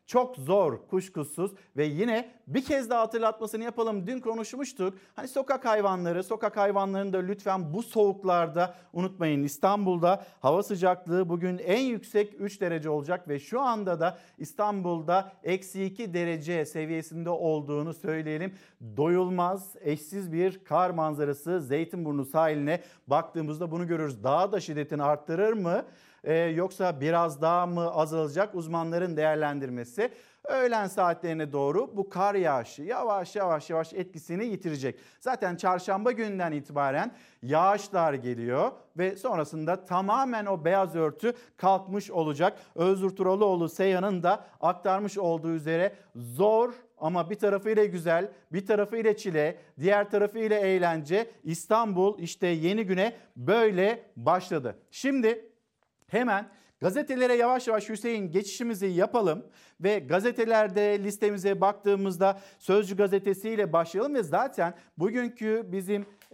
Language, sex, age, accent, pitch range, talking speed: Turkish, male, 50-69, native, 165-210 Hz, 120 wpm